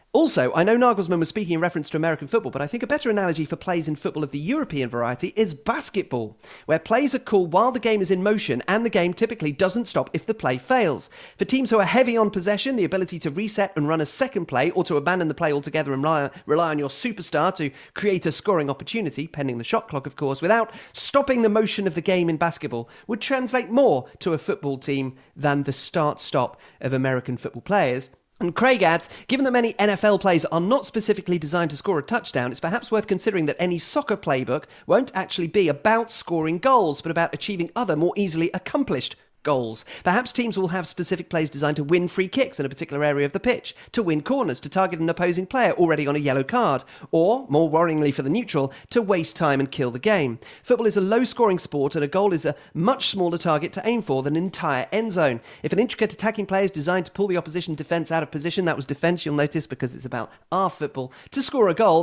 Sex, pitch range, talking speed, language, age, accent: male, 150-215 Hz, 230 wpm, English, 40-59, British